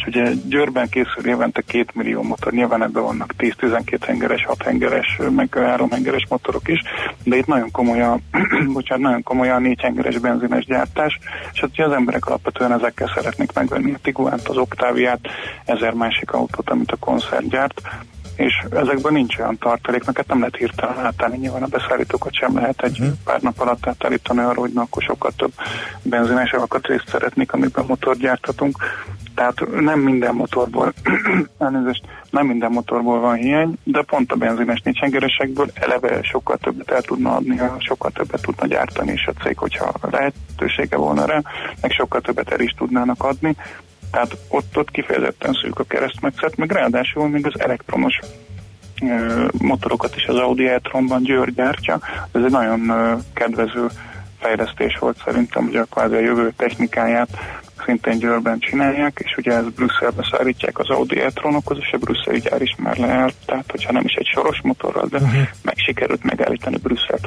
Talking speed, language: 160 wpm, Hungarian